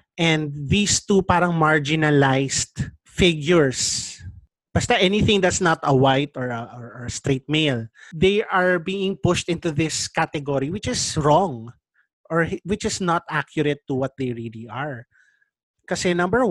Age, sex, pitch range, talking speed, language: 30-49, male, 135-185 Hz, 145 wpm, English